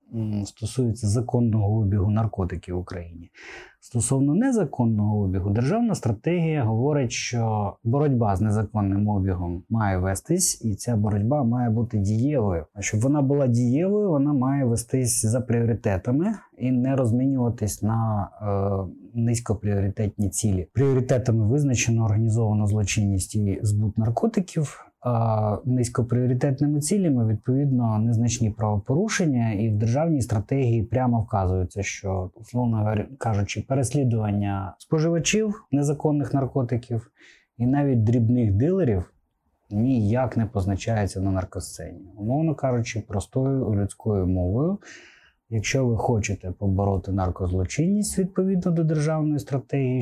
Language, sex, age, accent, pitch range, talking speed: Ukrainian, male, 20-39, native, 105-130 Hz, 110 wpm